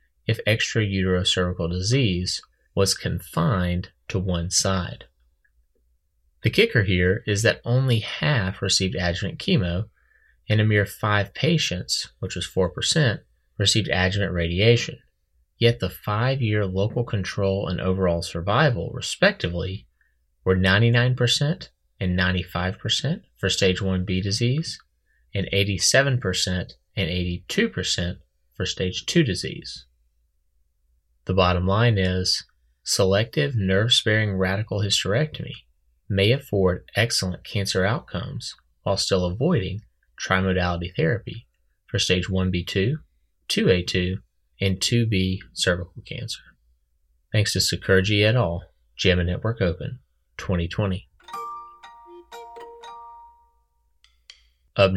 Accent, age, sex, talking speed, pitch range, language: American, 30-49, male, 100 wpm, 90-115 Hz, English